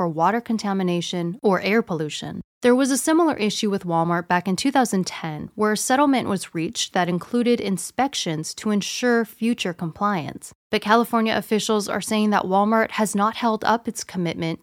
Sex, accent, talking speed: female, American, 165 wpm